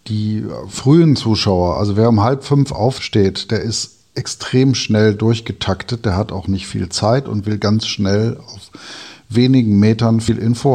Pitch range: 100-115 Hz